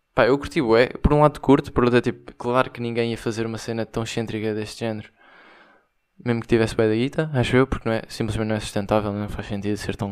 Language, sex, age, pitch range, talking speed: Portuguese, male, 20-39, 105-130 Hz, 255 wpm